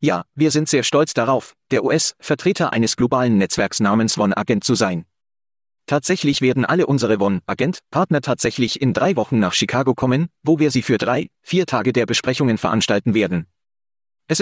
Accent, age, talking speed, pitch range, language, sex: German, 40-59, 160 wpm, 115-155 Hz, German, male